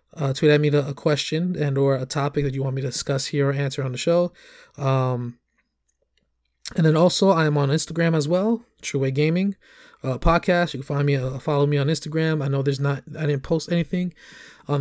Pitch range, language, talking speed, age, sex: 135-165 Hz, English, 225 wpm, 20-39, male